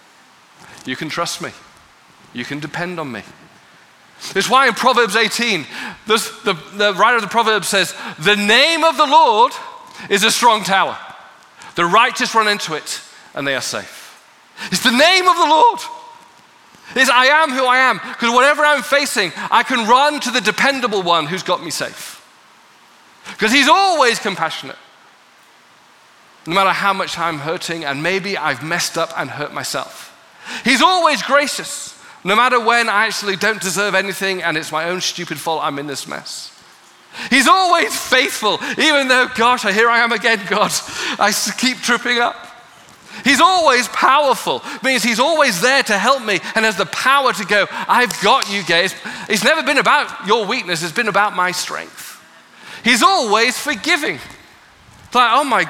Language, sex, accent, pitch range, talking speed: English, male, British, 190-265 Hz, 170 wpm